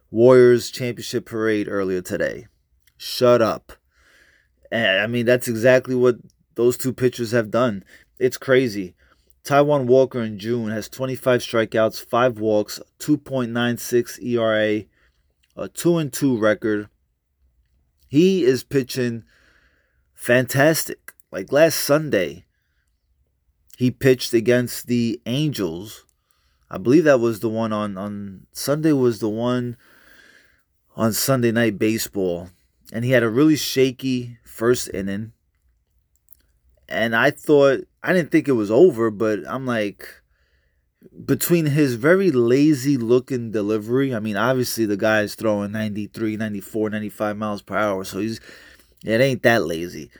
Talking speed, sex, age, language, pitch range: 125 wpm, male, 20-39, English, 100-130 Hz